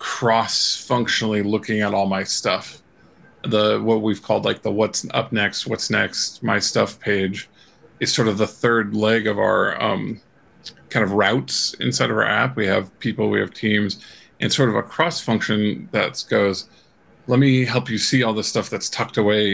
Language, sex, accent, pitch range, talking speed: English, male, American, 105-130 Hz, 185 wpm